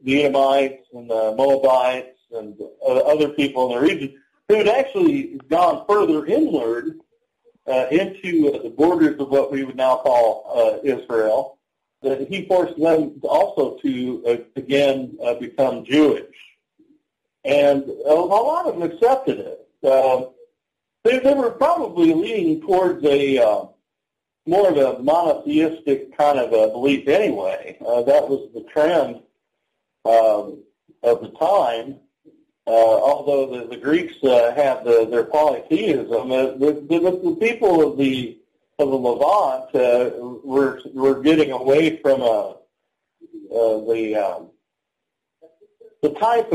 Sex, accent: male, American